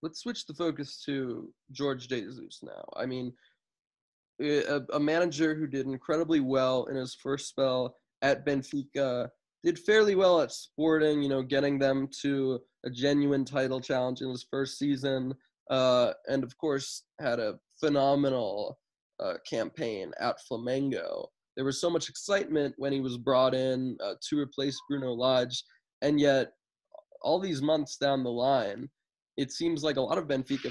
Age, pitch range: 20-39, 130-150 Hz